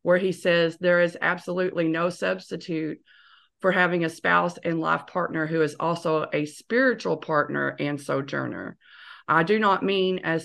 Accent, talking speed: American, 160 wpm